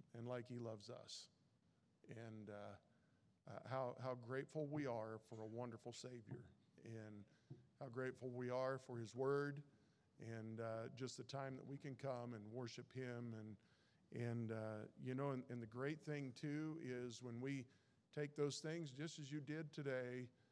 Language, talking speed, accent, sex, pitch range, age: English, 175 wpm, American, male, 115-140 Hz, 50-69